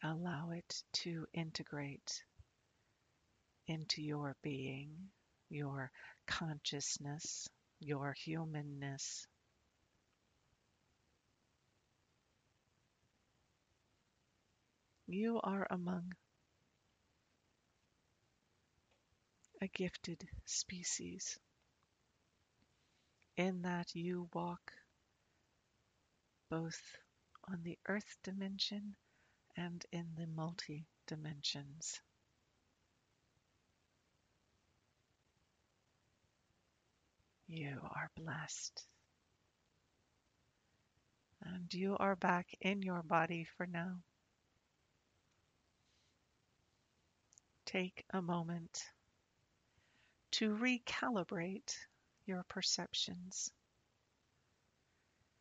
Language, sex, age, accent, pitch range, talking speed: English, female, 50-69, American, 125-180 Hz, 55 wpm